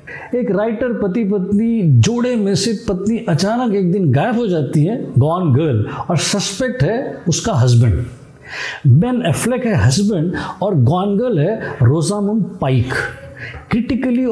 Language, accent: Hindi, native